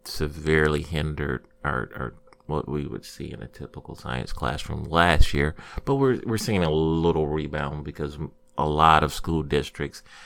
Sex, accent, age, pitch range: male, American, 30-49, 75-90 Hz